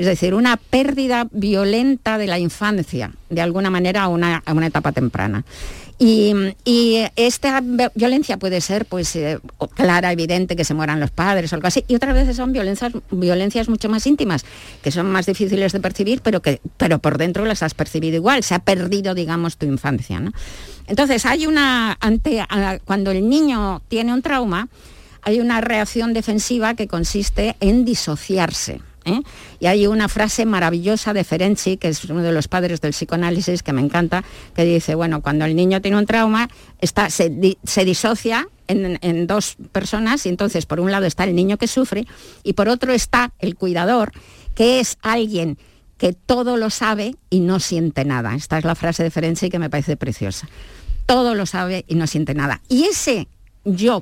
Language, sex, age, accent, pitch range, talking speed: Spanish, female, 50-69, Spanish, 170-225 Hz, 180 wpm